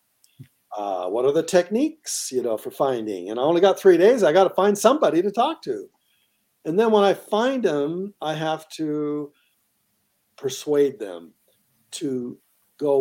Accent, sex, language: American, male, English